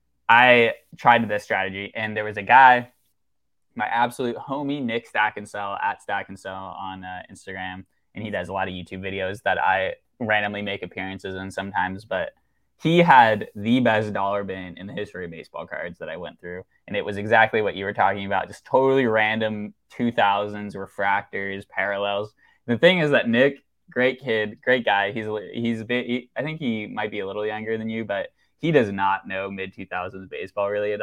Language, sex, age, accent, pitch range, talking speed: English, male, 10-29, American, 95-115 Hz, 200 wpm